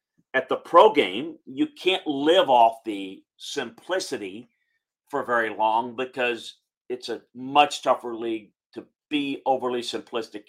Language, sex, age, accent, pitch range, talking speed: English, male, 40-59, American, 110-150 Hz, 130 wpm